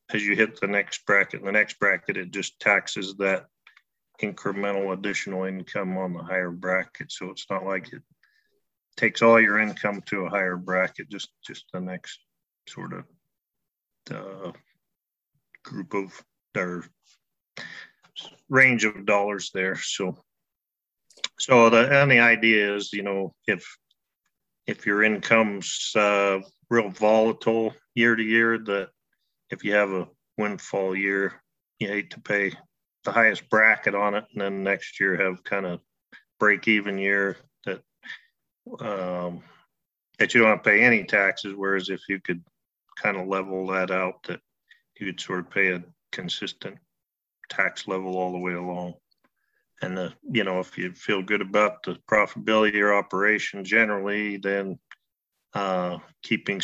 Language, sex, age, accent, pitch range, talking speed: English, male, 50-69, American, 95-105 Hz, 150 wpm